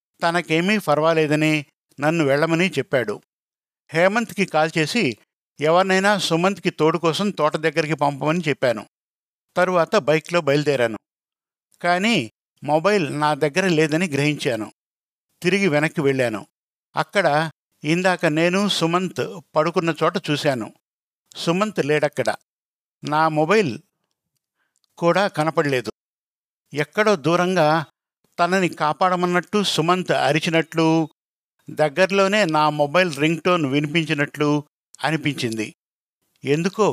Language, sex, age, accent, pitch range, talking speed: Telugu, male, 50-69, native, 145-180 Hz, 85 wpm